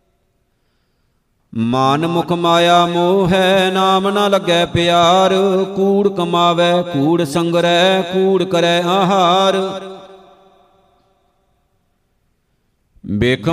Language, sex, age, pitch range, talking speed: Punjabi, male, 50-69, 170-190 Hz, 70 wpm